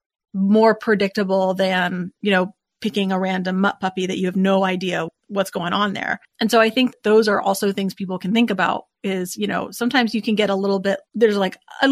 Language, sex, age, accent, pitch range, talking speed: English, female, 30-49, American, 195-235 Hz, 220 wpm